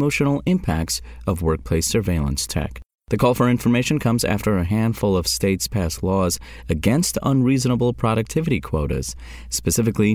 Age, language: 30-49, English